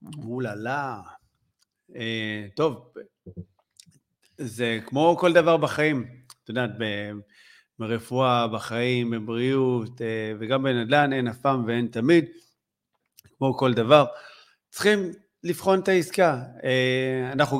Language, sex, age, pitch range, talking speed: Hebrew, male, 40-59, 120-150 Hz, 110 wpm